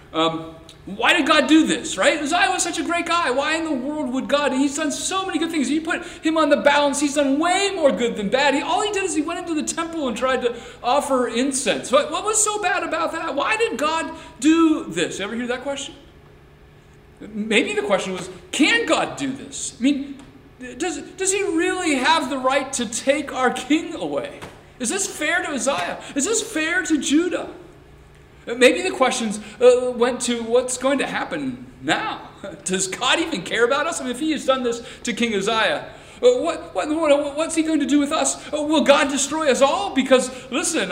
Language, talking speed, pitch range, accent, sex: English, 215 wpm, 210-315 Hz, American, male